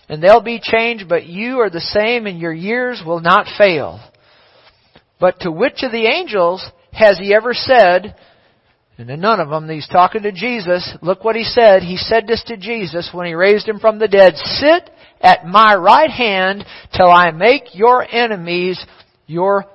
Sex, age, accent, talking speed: male, 50-69, American, 185 wpm